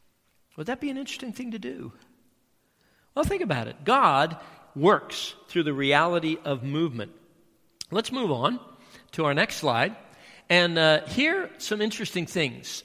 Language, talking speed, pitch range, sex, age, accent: English, 155 wpm, 140-195 Hz, male, 50-69, American